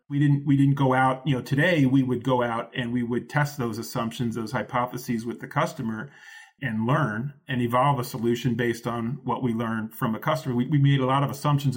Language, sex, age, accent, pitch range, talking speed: English, male, 30-49, American, 120-140 Hz, 230 wpm